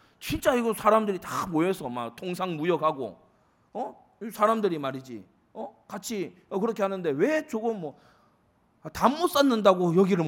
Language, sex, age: Korean, male, 40-59